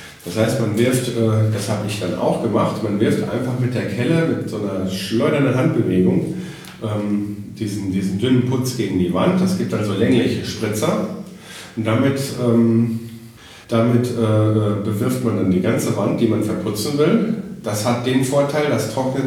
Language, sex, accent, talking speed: German, male, German, 165 wpm